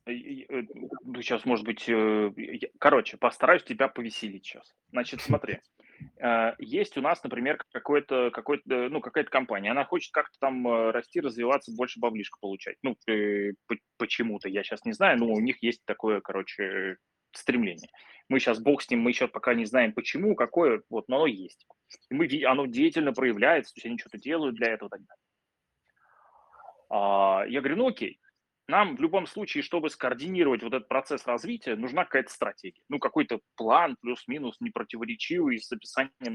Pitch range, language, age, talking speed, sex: 115-180 Hz, Russian, 20-39, 155 wpm, male